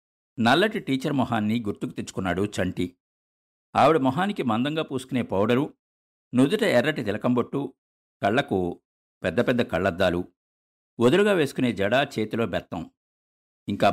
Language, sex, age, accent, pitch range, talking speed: Telugu, male, 50-69, native, 85-135 Hz, 105 wpm